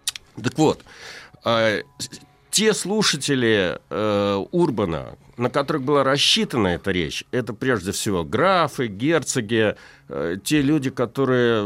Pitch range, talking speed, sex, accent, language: 100-160 Hz, 110 wpm, male, native, Russian